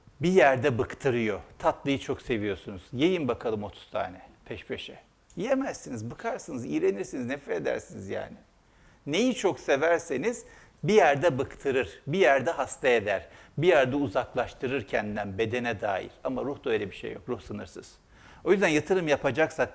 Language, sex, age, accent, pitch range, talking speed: Turkish, male, 60-79, native, 110-170 Hz, 145 wpm